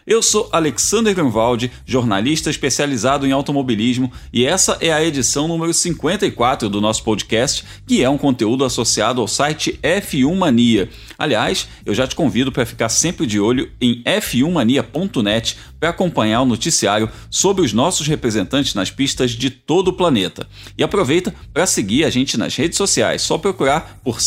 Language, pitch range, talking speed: Portuguese, 115-165 Hz, 165 wpm